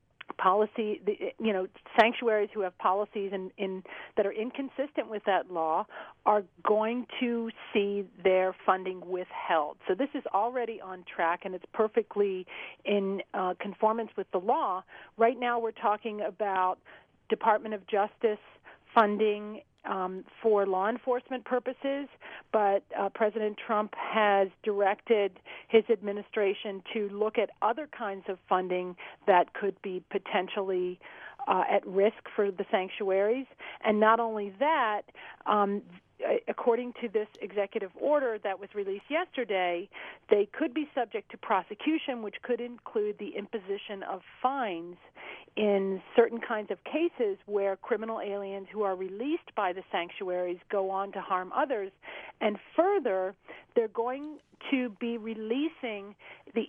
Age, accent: 40-59, American